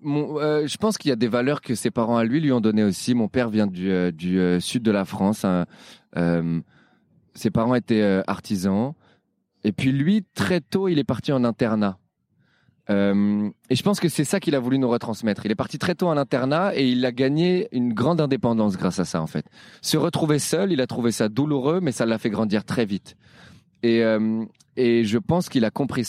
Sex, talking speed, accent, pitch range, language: male, 230 wpm, French, 105-140 Hz, French